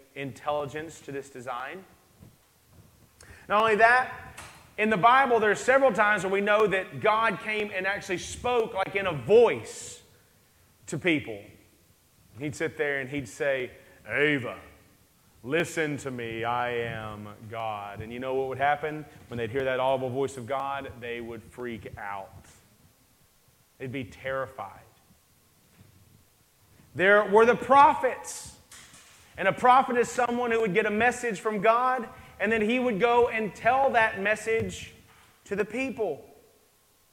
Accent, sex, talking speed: American, male, 145 wpm